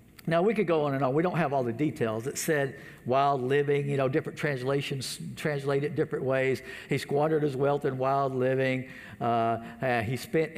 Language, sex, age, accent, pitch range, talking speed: English, male, 60-79, American, 125-175 Hz, 200 wpm